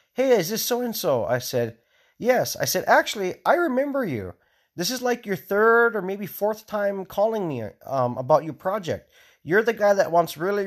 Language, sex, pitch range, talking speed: English, male, 145-215 Hz, 190 wpm